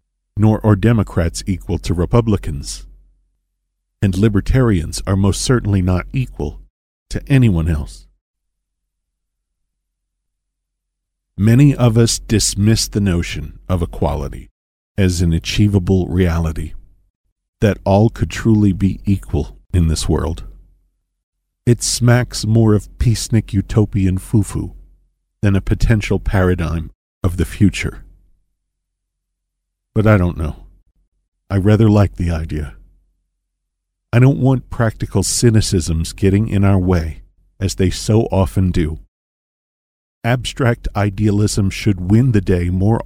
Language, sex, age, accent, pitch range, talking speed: English, male, 50-69, American, 85-105 Hz, 115 wpm